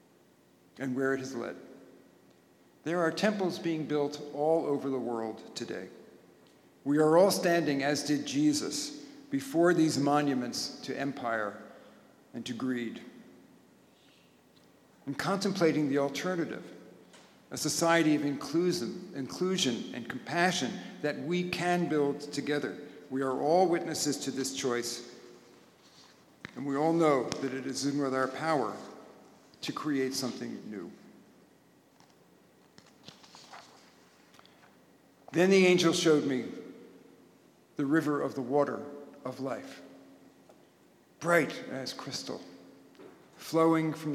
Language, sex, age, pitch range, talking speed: English, male, 50-69, 130-160 Hz, 115 wpm